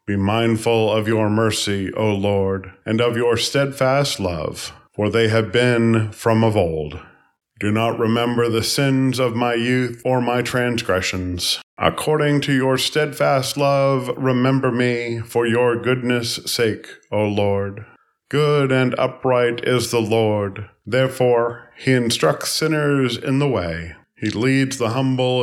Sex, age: male, 40-59